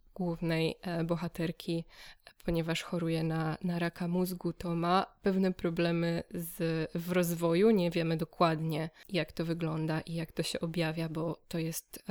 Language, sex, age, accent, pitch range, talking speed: Polish, female, 20-39, native, 170-185 Hz, 140 wpm